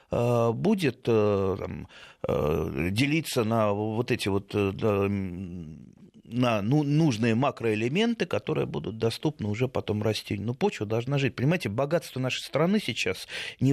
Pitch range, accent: 105-135 Hz, native